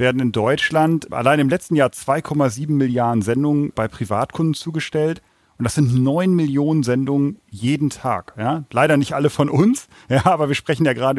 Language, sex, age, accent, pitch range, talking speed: German, male, 40-59, German, 120-150 Hz, 165 wpm